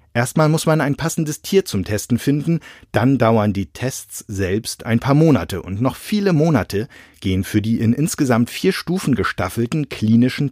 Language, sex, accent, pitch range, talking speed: German, male, German, 100-135 Hz, 170 wpm